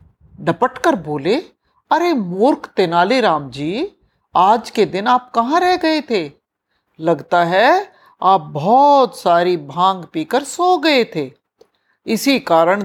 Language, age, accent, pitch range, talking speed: Hindi, 50-69, native, 180-275 Hz, 120 wpm